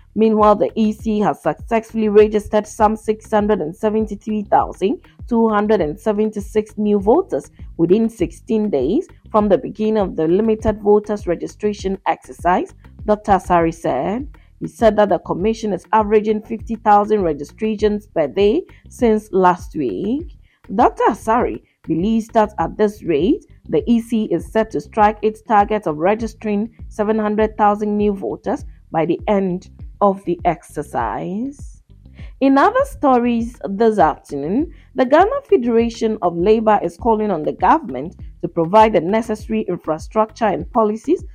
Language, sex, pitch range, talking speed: English, female, 200-225 Hz, 125 wpm